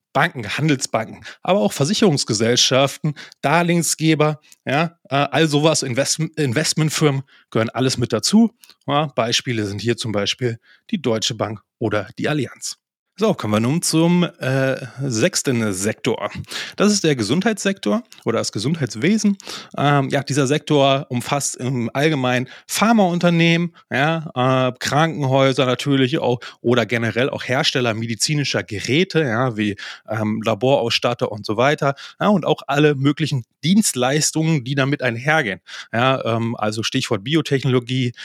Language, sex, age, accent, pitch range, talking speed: German, male, 30-49, German, 120-155 Hz, 125 wpm